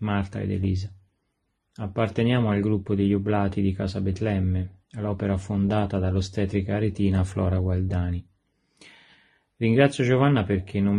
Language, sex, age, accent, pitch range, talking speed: Italian, male, 30-49, native, 95-105 Hz, 115 wpm